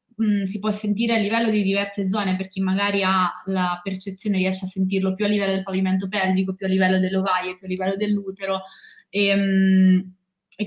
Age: 20-39